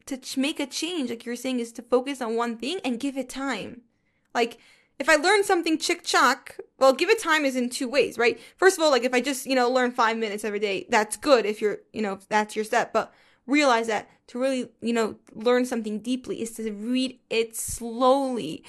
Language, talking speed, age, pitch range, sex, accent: English, 230 wpm, 10-29, 220-280 Hz, female, American